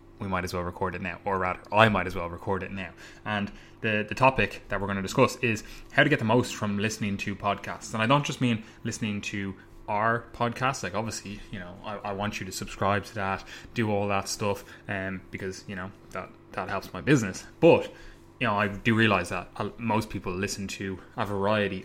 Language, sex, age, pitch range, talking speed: English, male, 20-39, 95-110 Hz, 230 wpm